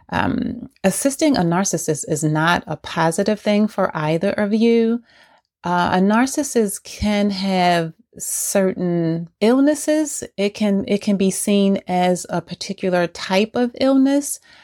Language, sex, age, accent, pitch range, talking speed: English, female, 30-49, American, 170-210 Hz, 125 wpm